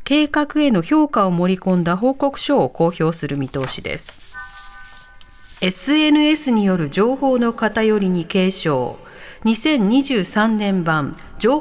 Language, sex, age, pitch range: Japanese, female, 40-59, 185-275 Hz